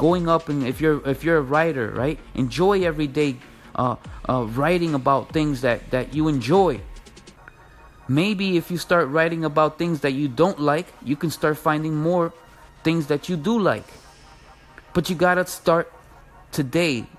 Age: 30-49